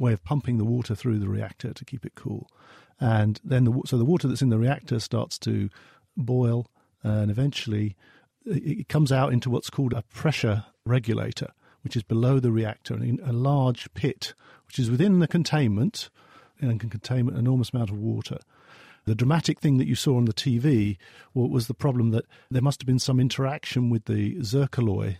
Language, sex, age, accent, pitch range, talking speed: English, male, 50-69, British, 110-130 Hz, 195 wpm